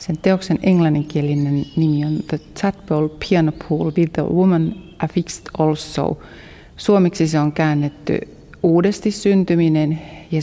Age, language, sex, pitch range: 30-49, Finnish, female, 150-180 Hz